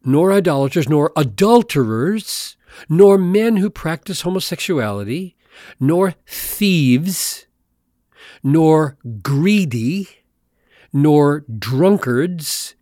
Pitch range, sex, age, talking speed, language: 135-195 Hz, male, 40-59, 70 wpm, English